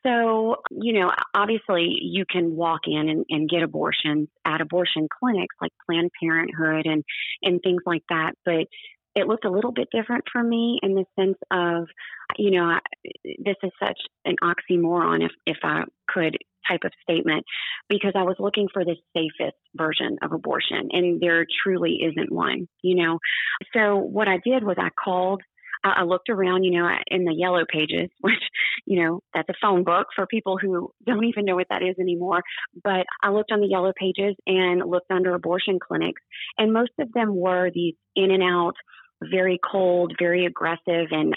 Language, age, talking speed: English, 30-49, 185 wpm